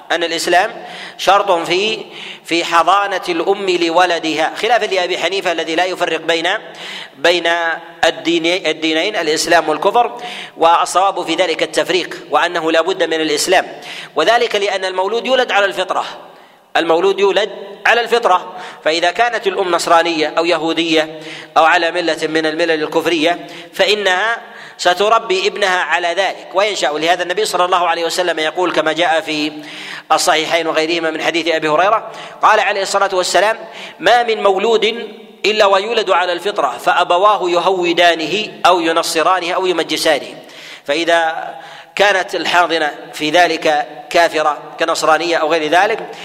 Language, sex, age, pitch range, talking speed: Arabic, male, 40-59, 165-200 Hz, 125 wpm